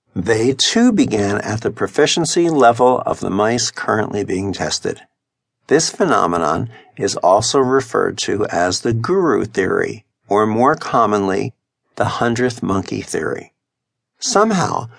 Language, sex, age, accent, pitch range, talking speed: English, male, 60-79, American, 105-135 Hz, 125 wpm